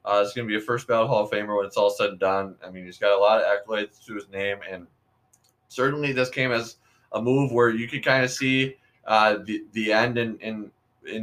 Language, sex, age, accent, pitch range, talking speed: English, male, 20-39, American, 105-125 Hz, 250 wpm